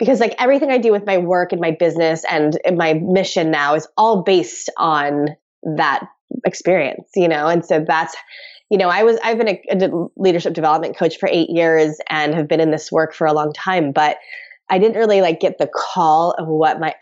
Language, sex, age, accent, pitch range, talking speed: English, female, 20-39, American, 165-235 Hz, 215 wpm